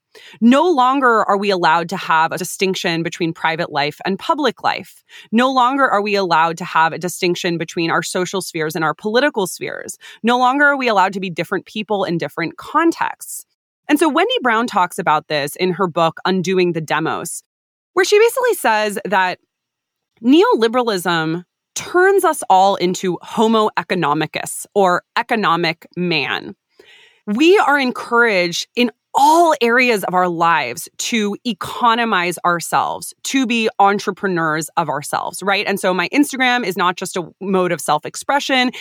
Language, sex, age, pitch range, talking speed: English, female, 20-39, 175-250 Hz, 160 wpm